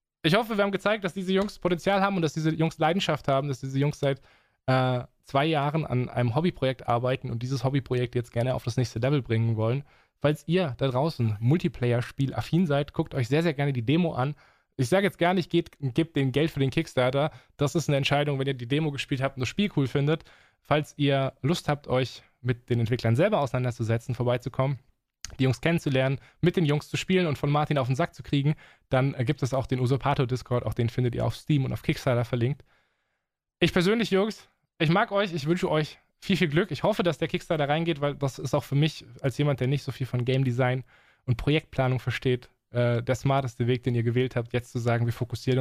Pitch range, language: 125-155 Hz, German